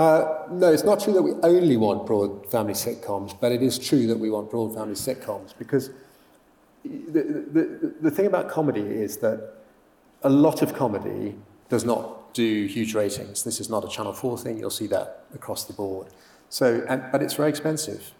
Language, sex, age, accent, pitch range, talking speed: English, male, 40-59, British, 105-130 Hz, 195 wpm